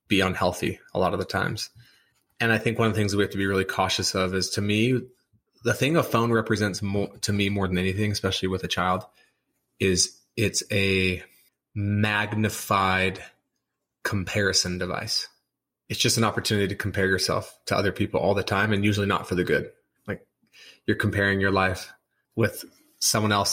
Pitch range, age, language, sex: 95-115 Hz, 30-49, English, male